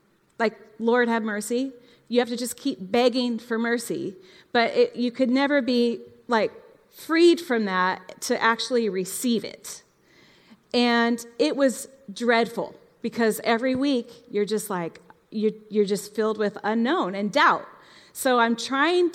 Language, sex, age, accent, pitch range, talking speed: English, female, 30-49, American, 195-250 Hz, 145 wpm